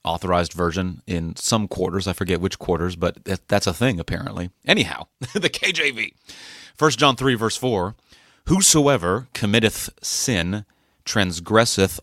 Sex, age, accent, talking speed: male, 30-49, American, 130 wpm